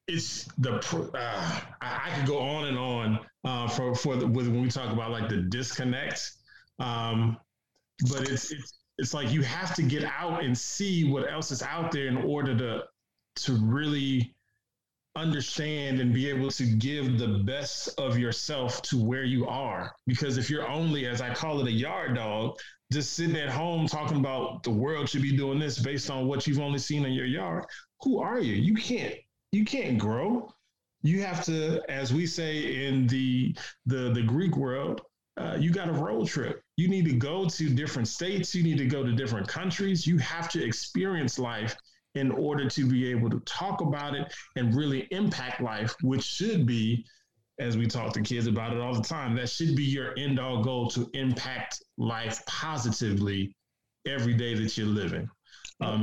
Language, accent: English, American